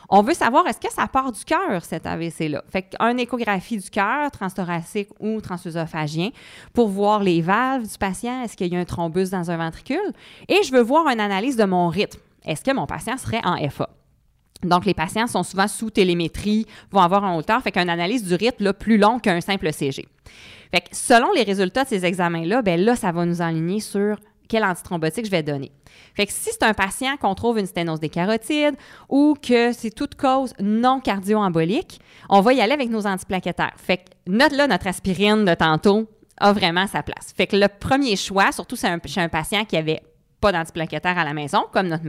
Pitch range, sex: 170-225 Hz, female